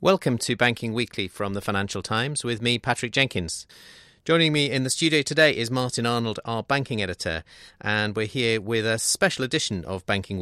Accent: British